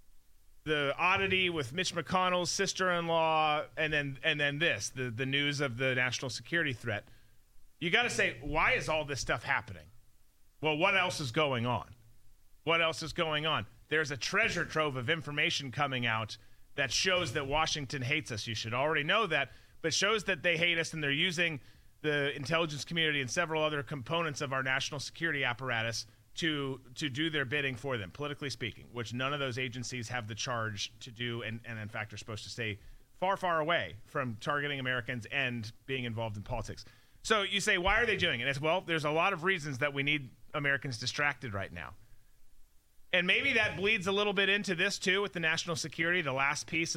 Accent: American